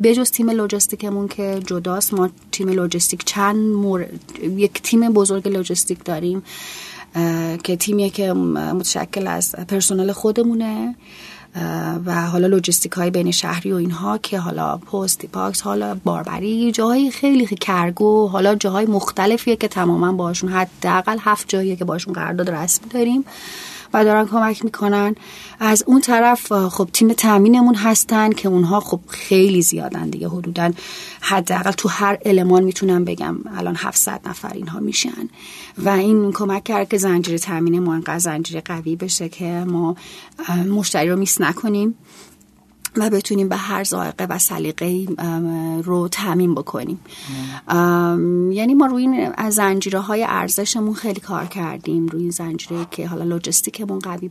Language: Persian